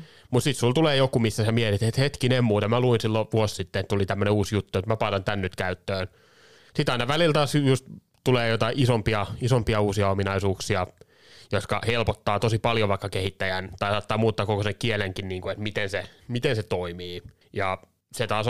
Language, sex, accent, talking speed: Finnish, male, native, 200 wpm